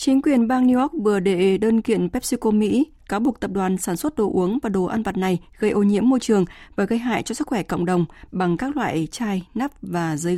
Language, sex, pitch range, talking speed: Vietnamese, female, 180-230 Hz, 255 wpm